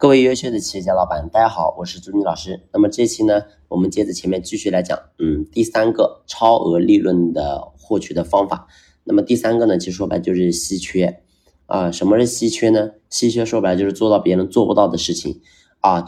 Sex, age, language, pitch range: male, 30-49, Chinese, 85-110 Hz